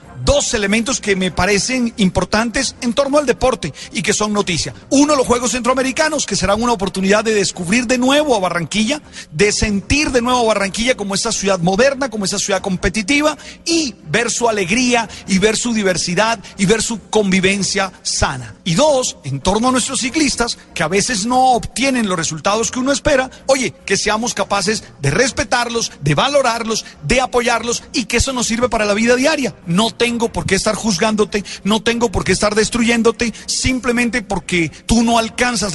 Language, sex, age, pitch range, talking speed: Spanish, male, 40-59, 190-240 Hz, 185 wpm